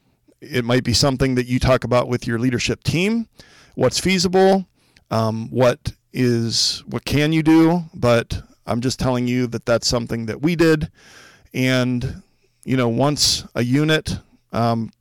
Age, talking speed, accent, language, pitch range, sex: 40-59, 155 wpm, American, English, 115-140 Hz, male